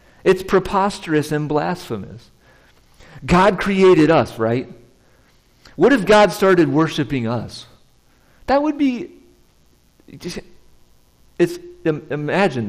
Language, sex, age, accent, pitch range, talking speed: English, male, 50-69, American, 95-135 Hz, 95 wpm